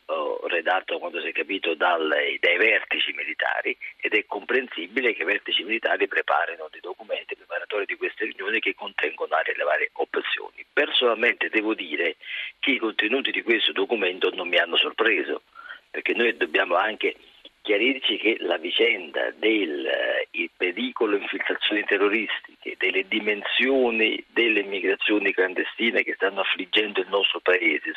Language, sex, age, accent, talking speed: Italian, male, 40-59, native, 135 wpm